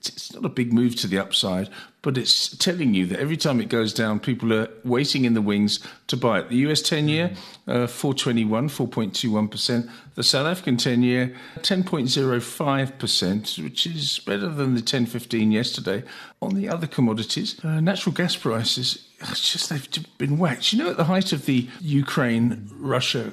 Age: 50-69